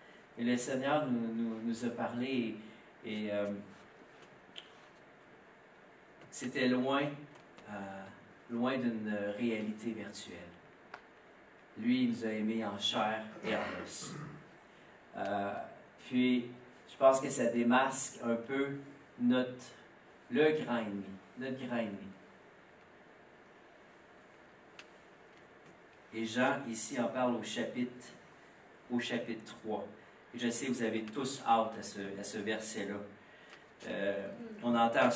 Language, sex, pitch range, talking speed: French, male, 115-155 Hz, 115 wpm